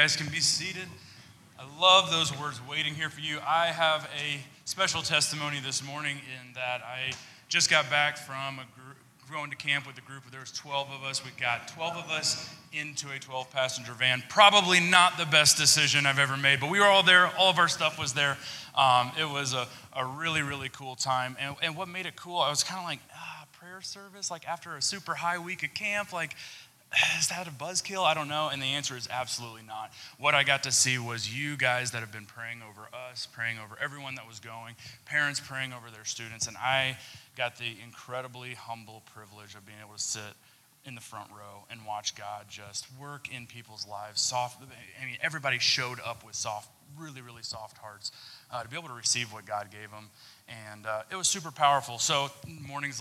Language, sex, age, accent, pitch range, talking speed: English, male, 20-39, American, 120-150 Hz, 215 wpm